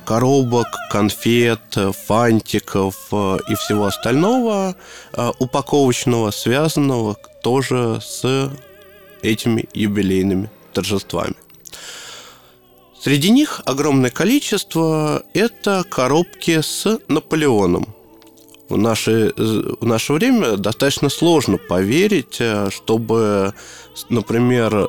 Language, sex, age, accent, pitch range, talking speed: Russian, male, 20-39, native, 110-155 Hz, 75 wpm